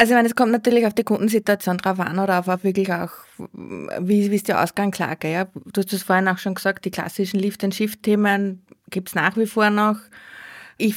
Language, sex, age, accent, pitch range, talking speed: English, female, 20-39, Austrian, 190-220 Hz, 210 wpm